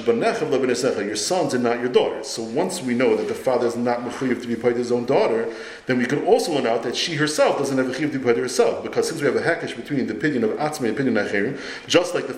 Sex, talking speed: male, 275 wpm